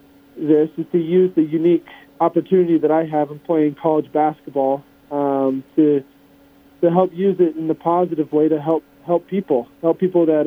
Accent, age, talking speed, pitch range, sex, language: American, 40-59, 180 wpm, 140-160 Hz, male, English